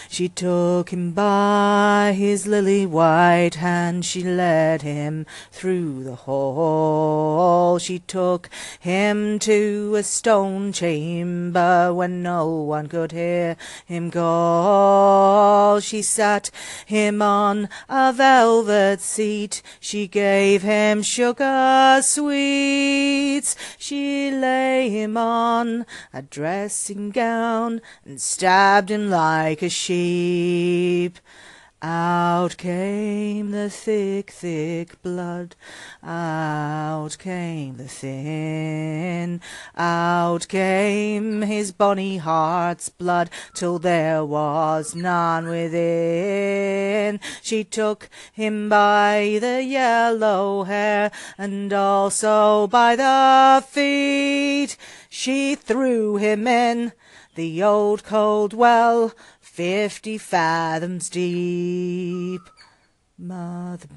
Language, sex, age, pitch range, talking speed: English, female, 40-59, 170-210 Hz, 90 wpm